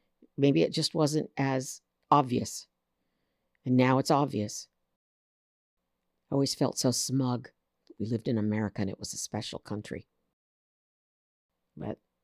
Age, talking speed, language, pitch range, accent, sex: 60-79, 125 wpm, English, 90-125 Hz, American, female